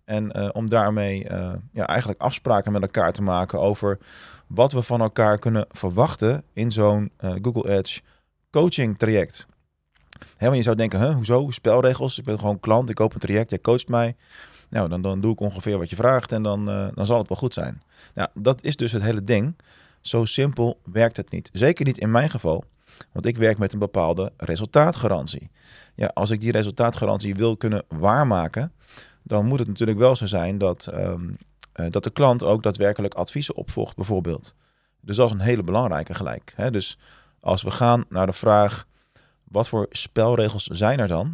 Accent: Dutch